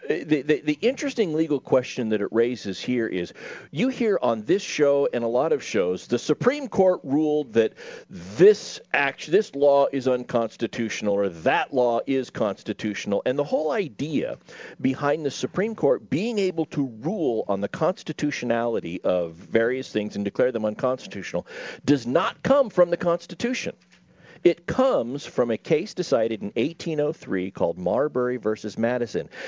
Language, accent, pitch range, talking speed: English, American, 120-185 Hz, 155 wpm